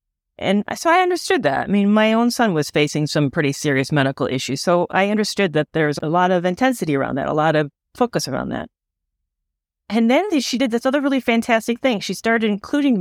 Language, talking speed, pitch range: English, 210 wpm, 150-215 Hz